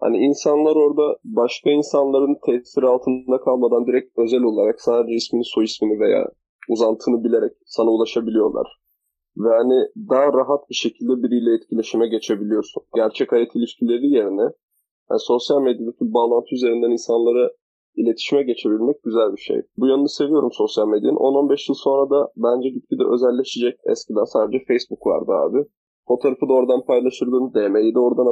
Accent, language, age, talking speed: native, Turkish, 20-39, 145 wpm